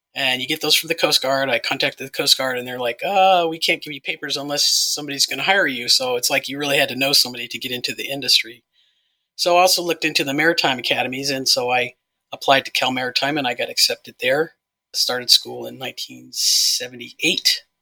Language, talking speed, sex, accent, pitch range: English, 225 wpm, male, American, 125-145 Hz